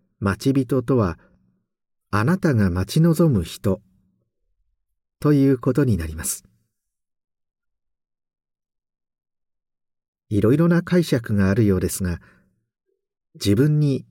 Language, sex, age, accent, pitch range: Japanese, male, 50-69, native, 95-145 Hz